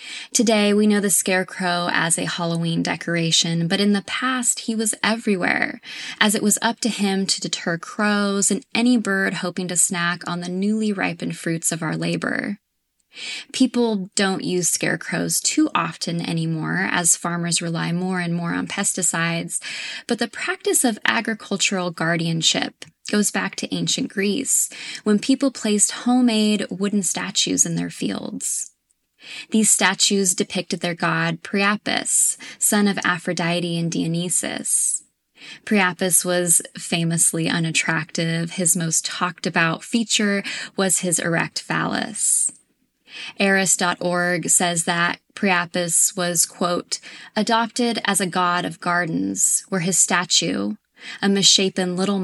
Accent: American